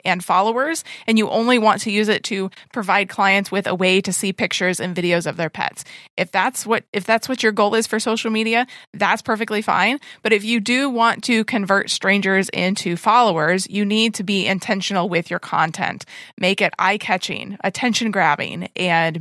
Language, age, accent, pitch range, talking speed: English, 20-39, American, 185-220 Hz, 190 wpm